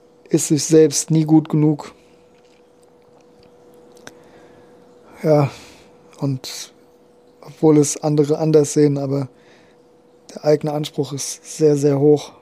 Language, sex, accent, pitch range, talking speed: German, male, German, 140-150 Hz, 100 wpm